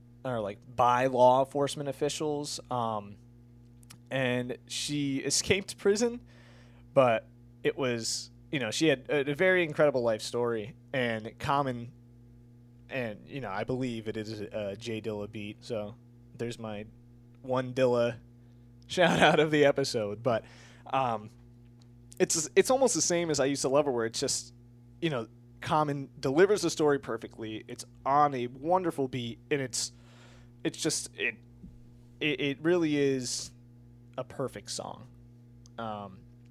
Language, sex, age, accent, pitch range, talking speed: English, male, 20-39, American, 120-145 Hz, 145 wpm